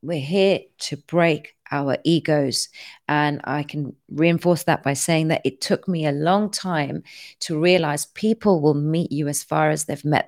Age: 30-49